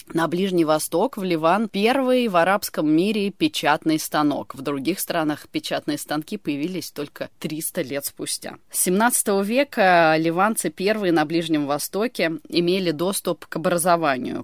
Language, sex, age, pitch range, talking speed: Russian, female, 20-39, 155-195 Hz, 135 wpm